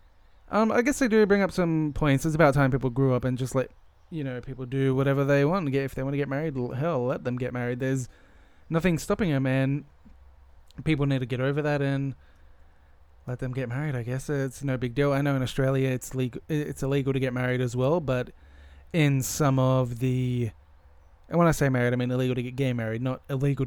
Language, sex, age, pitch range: English, male, 20-39, 120-150 Hz